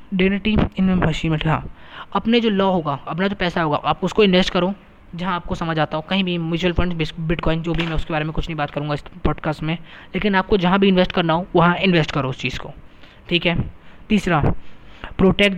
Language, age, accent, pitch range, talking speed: Hindi, 20-39, native, 160-195 Hz, 215 wpm